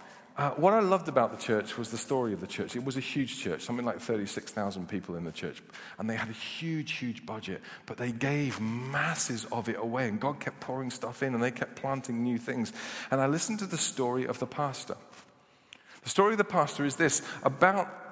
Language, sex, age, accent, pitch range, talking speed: English, male, 40-59, British, 120-160 Hz, 225 wpm